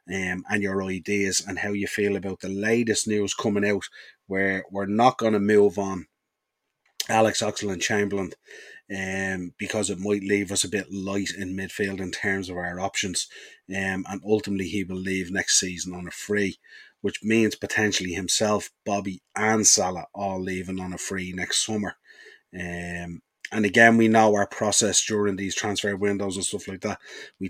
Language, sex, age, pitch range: English, male, 30-49, 95-105 Hz